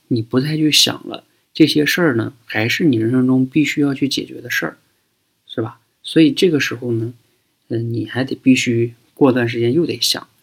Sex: male